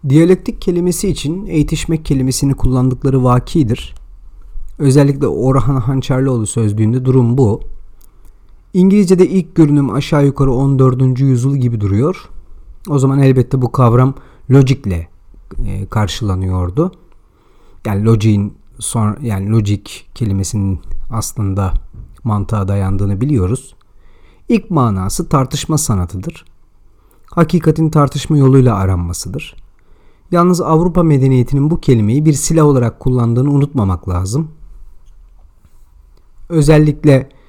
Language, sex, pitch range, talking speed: Turkish, male, 100-140 Hz, 90 wpm